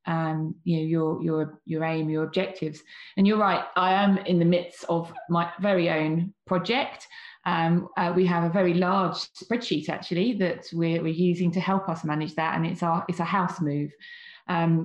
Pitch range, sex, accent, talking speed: 165-185 Hz, female, British, 195 wpm